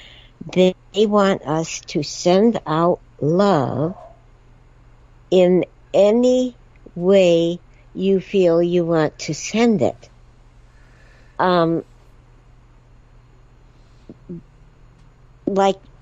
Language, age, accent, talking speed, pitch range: English, 60-79, American, 70 wpm, 125-175 Hz